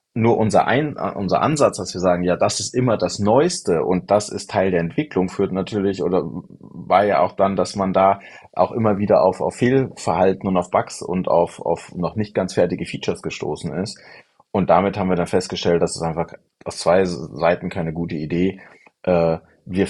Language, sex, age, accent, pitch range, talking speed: German, male, 30-49, German, 80-95 Hz, 195 wpm